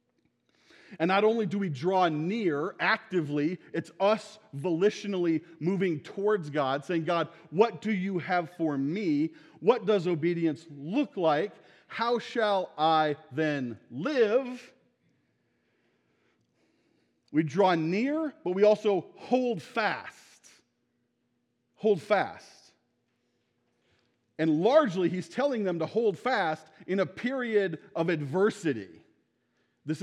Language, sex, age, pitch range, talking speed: English, male, 40-59, 145-205 Hz, 110 wpm